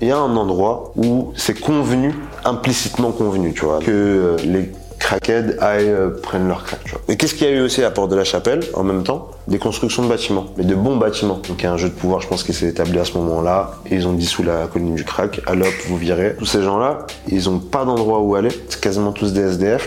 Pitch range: 90-115 Hz